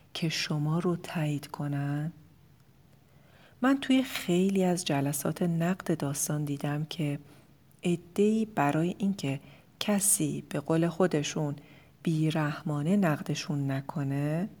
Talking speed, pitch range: 100 wpm, 145-180 Hz